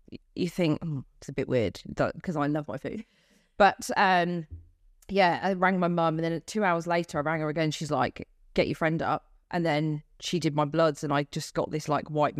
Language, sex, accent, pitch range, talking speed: English, female, British, 150-190 Hz, 225 wpm